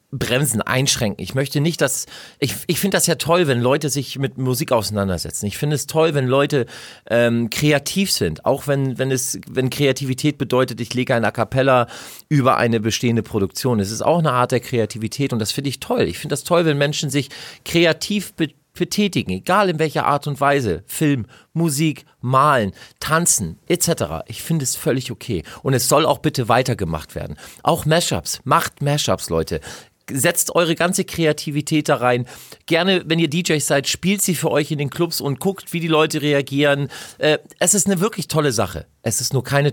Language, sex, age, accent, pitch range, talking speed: German, male, 40-59, German, 110-150 Hz, 190 wpm